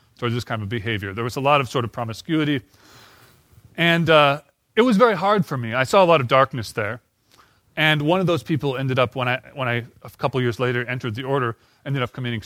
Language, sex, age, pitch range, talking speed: English, male, 30-49, 115-150 Hz, 235 wpm